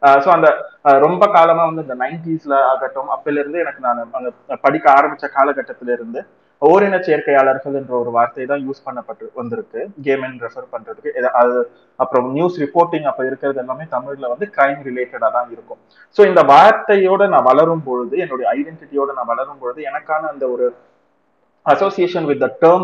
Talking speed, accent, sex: 140 wpm, native, male